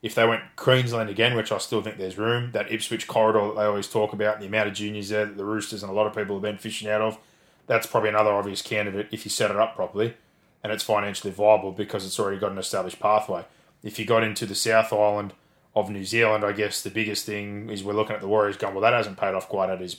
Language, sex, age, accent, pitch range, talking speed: English, male, 20-39, Australian, 100-110 Hz, 270 wpm